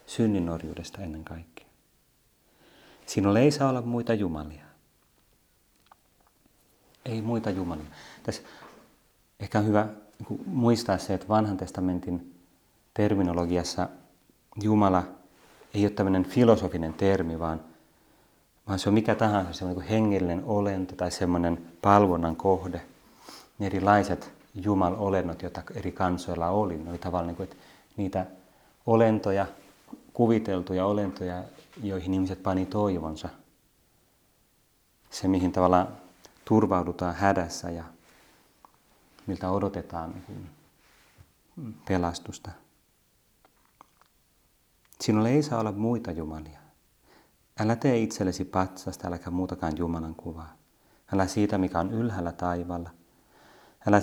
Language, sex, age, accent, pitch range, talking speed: Finnish, male, 30-49, native, 85-105 Hz, 100 wpm